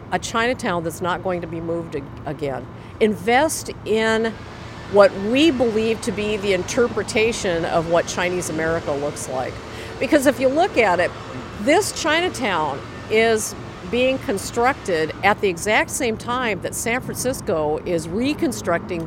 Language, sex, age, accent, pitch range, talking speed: English, female, 50-69, American, 180-250 Hz, 140 wpm